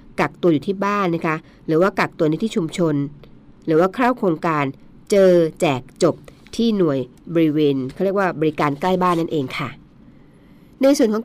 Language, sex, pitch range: Thai, female, 155-190 Hz